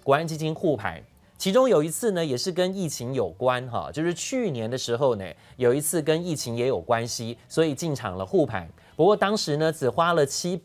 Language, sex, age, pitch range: Chinese, male, 30-49, 125-170 Hz